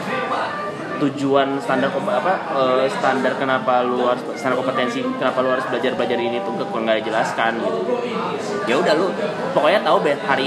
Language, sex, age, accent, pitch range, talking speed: Indonesian, male, 20-39, native, 125-190 Hz, 125 wpm